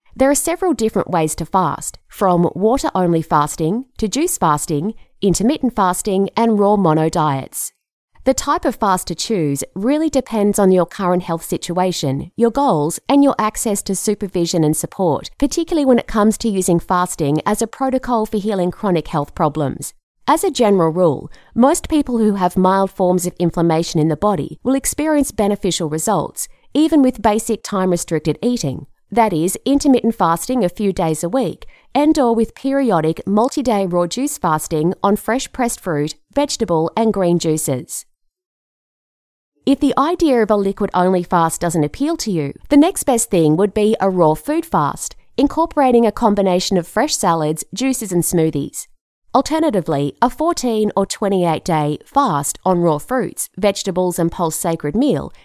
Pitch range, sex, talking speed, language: 170-250 Hz, female, 160 wpm, English